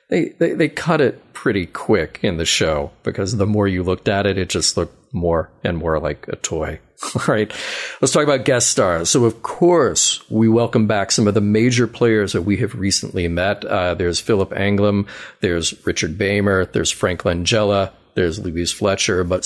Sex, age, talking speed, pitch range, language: male, 40-59, 195 wpm, 100-120 Hz, English